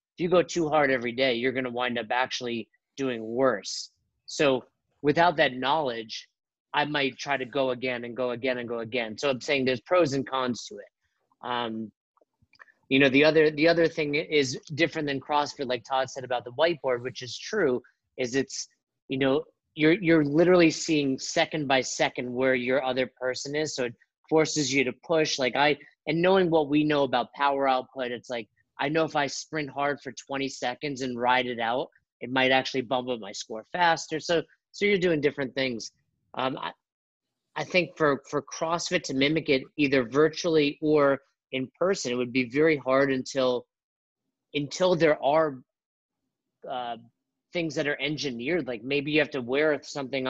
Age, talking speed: 30-49, 185 wpm